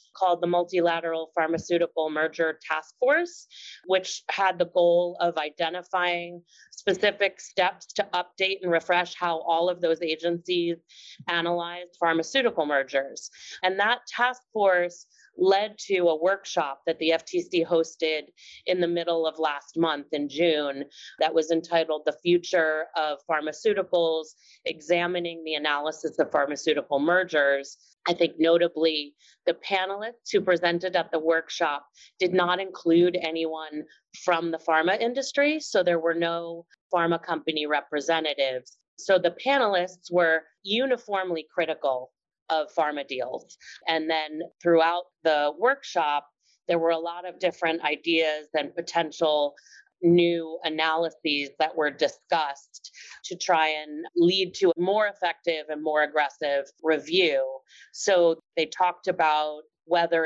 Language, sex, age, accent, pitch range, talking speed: English, female, 30-49, American, 160-185 Hz, 130 wpm